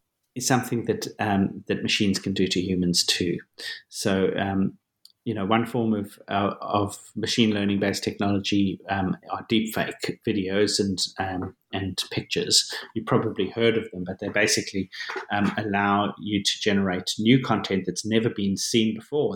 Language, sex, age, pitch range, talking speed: English, male, 30-49, 95-110 Hz, 165 wpm